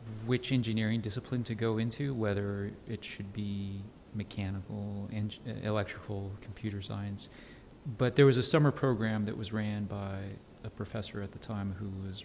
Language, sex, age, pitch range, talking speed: English, male, 40-59, 100-120 Hz, 150 wpm